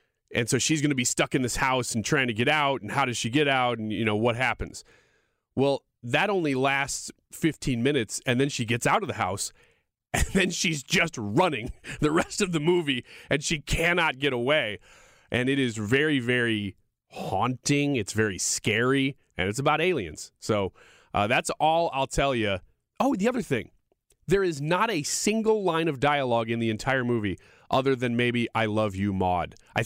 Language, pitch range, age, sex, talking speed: English, 110-140 Hz, 30-49, male, 200 wpm